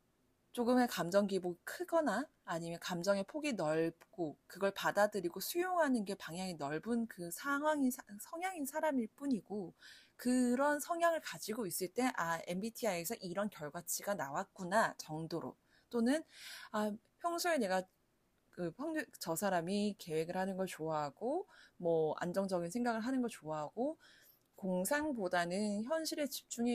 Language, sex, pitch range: Korean, female, 175-255 Hz